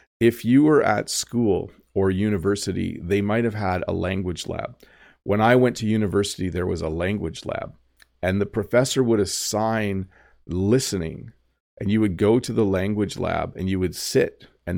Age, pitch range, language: 40-59, 85-105 Hz, English